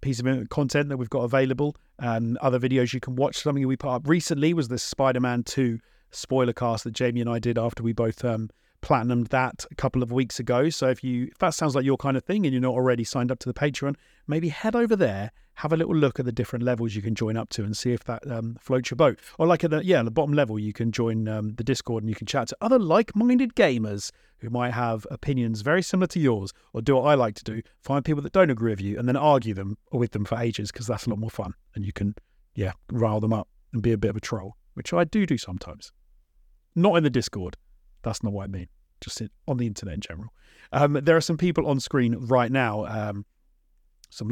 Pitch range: 110-140 Hz